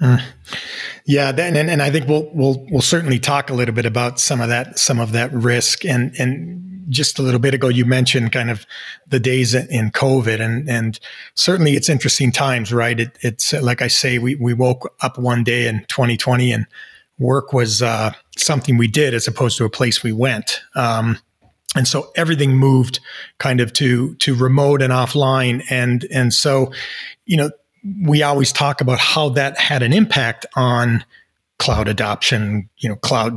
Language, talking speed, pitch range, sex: English, 185 wpm, 120-140 Hz, male